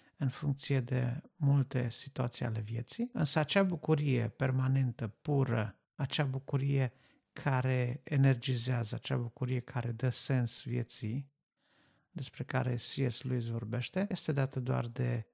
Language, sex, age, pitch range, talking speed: Romanian, male, 50-69, 120-140 Hz, 120 wpm